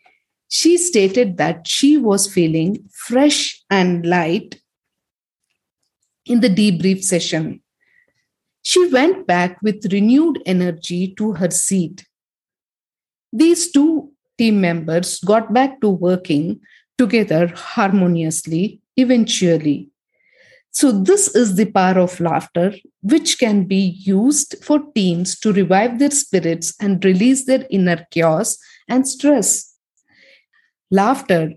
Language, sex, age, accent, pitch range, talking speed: English, female, 50-69, Indian, 180-265 Hz, 110 wpm